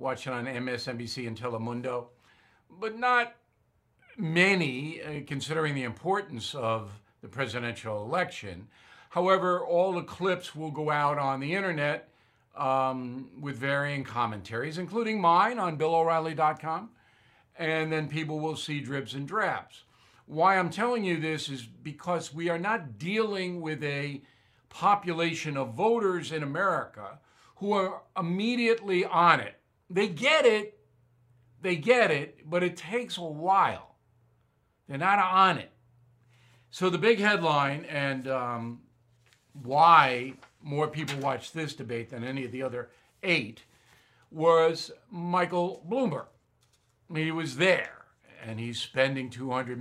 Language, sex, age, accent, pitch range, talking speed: English, male, 60-79, American, 125-180 Hz, 135 wpm